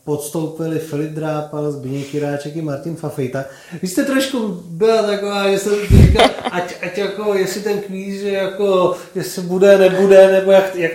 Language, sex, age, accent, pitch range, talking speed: Czech, male, 30-49, native, 130-180 Hz, 170 wpm